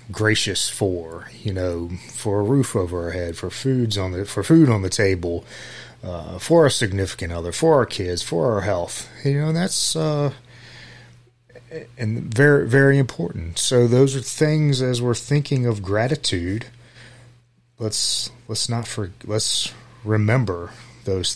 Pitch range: 95-125 Hz